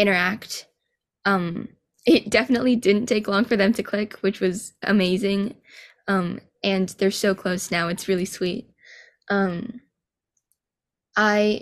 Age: 10-29